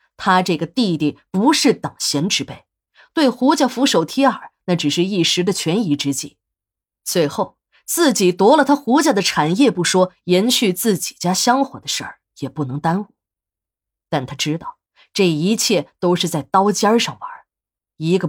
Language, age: Chinese, 20-39